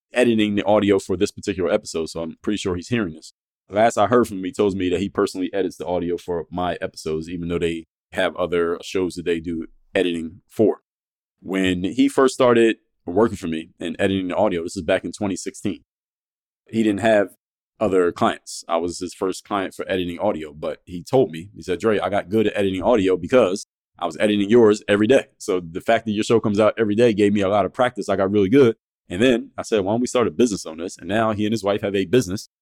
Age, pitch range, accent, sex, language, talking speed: 20-39, 95-110 Hz, American, male, English, 245 wpm